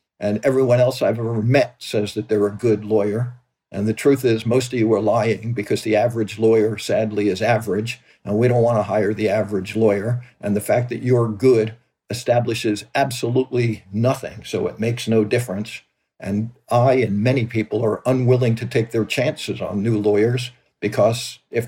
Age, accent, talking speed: 50-69, American, 185 wpm